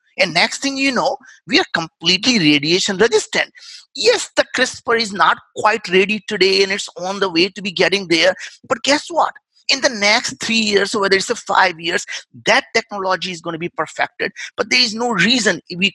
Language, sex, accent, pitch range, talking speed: English, male, Indian, 170-225 Hz, 205 wpm